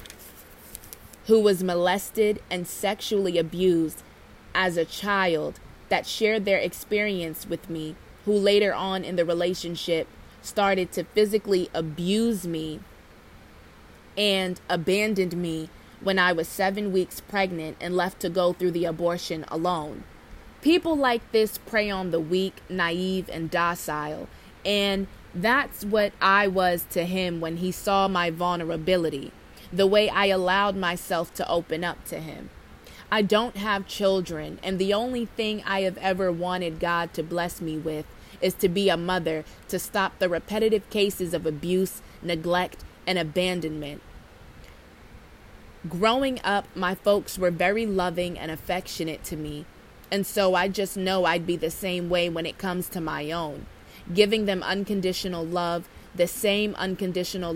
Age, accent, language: 20-39, American, English